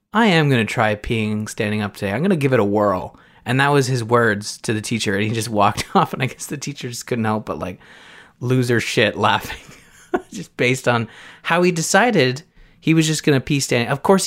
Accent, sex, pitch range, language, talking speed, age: American, male, 105-130 Hz, English, 235 wpm, 20-39